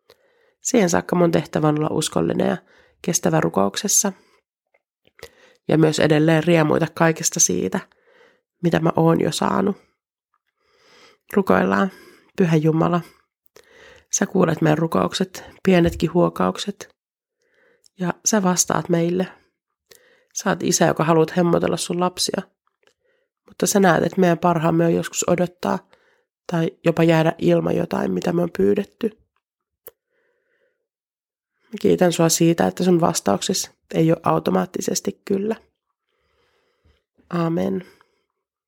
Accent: native